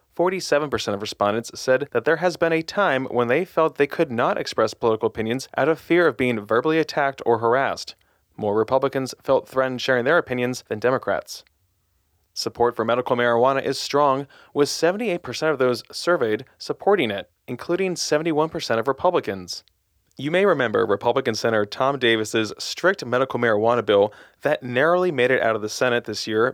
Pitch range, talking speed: 110-150 Hz, 170 wpm